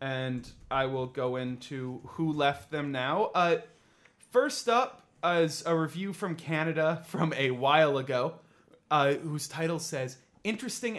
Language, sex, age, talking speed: English, male, 30-49, 140 wpm